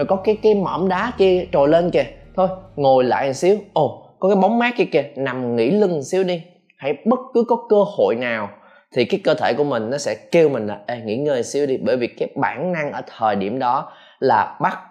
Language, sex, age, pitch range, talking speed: Vietnamese, male, 20-39, 125-200 Hz, 235 wpm